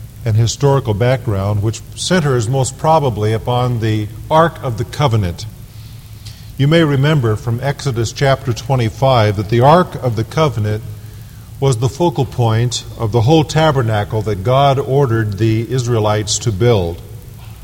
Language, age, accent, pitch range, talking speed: English, 50-69, American, 110-140 Hz, 140 wpm